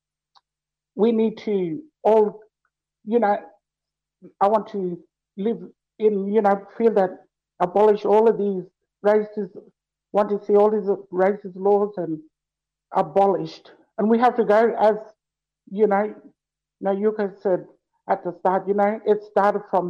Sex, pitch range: male, 185-210 Hz